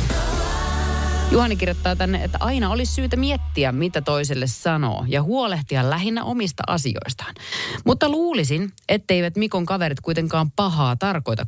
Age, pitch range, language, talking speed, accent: 30-49, 115-175 Hz, Finnish, 125 wpm, native